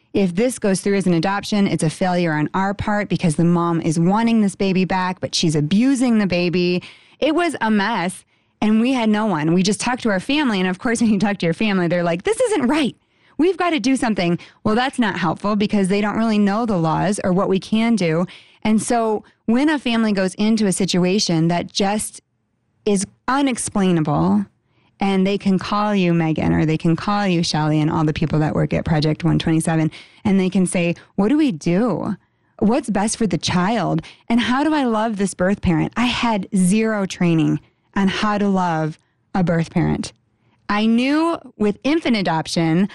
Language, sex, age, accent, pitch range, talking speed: English, female, 30-49, American, 170-225 Hz, 205 wpm